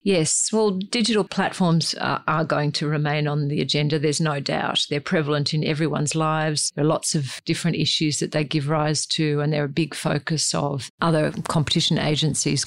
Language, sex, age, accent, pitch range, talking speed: English, female, 50-69, Australian, 145-165 Hz, 185 wpm